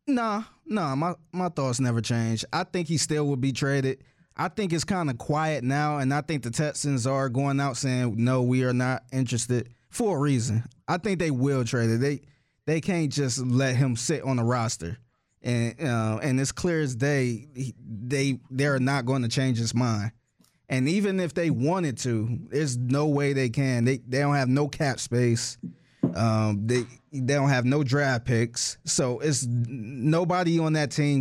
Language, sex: English, male